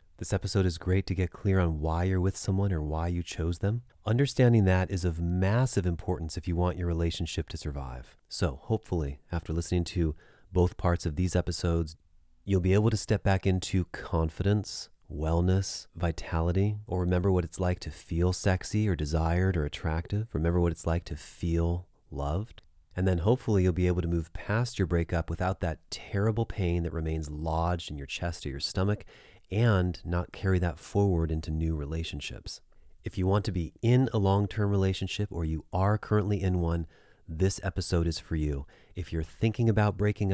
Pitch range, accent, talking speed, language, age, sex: 80-100 Hz, American, 185 wpm, English, 30-49, male